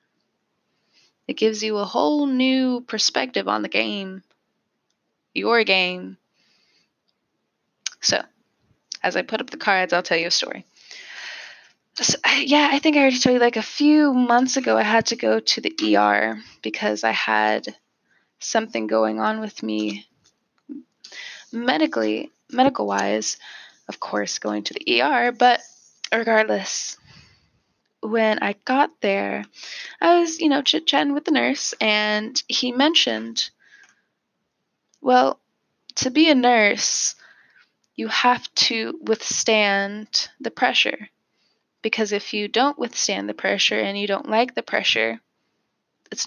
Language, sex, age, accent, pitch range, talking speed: English, female, 20-39, American, 175-255 Hz, 130 wpm